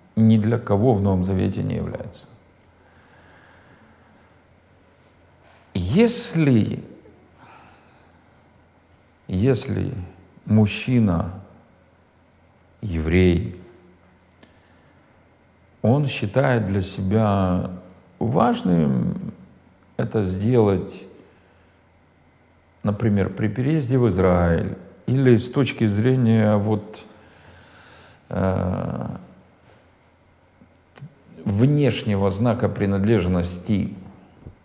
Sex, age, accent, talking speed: male, 50-69, native, 55 wpm